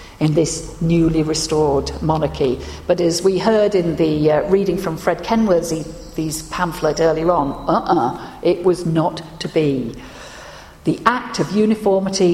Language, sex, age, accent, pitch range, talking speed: English, female, 50-69, British, 150-190 Hz, 140 wpm